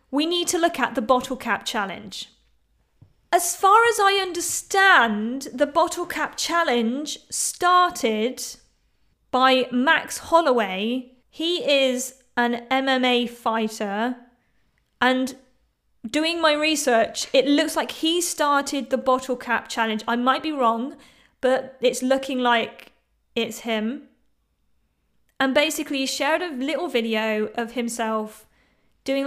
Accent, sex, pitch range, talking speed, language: British, female, 235-295 Hz, 125 wpm, English